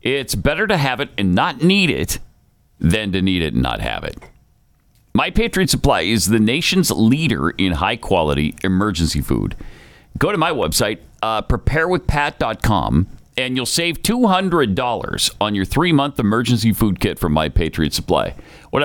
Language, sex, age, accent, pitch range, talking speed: English, male, 40-59, American, 95-160 Hz, 155 wpm